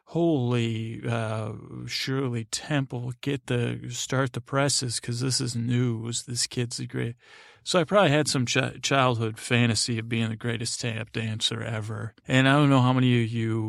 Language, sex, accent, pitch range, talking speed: English, male, American, 115-125 Hz, 190 wpm